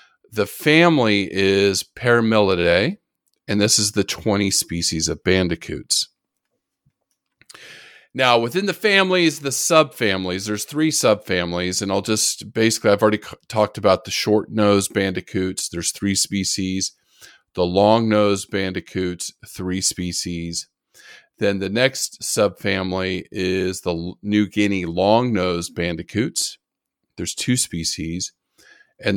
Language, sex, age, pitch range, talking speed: English, male, 40-59, 90-110 Hz, 115 wpm